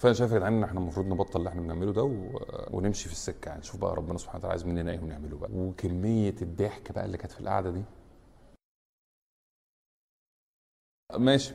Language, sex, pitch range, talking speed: Arabic, male, 95-125 Hz, 185 wpm